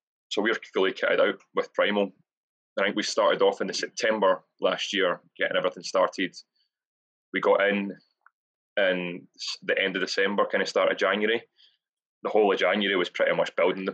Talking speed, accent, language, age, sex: 185 wpm, British, English, 20-39, male